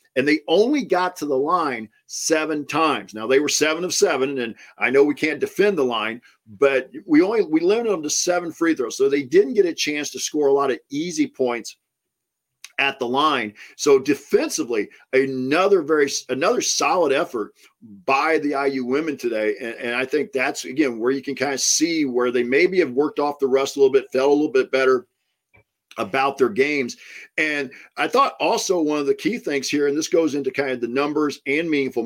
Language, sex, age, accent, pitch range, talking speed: English, male, 50-69, American, 130-225 Hz, 210 wpm